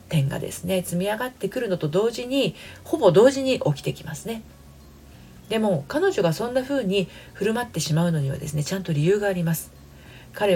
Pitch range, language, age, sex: 140-220 Hz, Japanese, 40-59, female